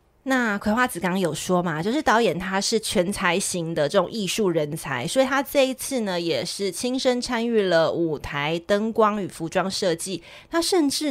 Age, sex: 30-49, female